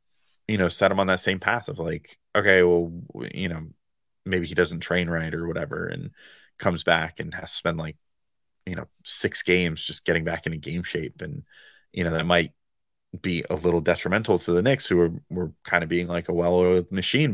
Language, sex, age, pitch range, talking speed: English, male, 30-49, 80-90 Hz, 210 wpm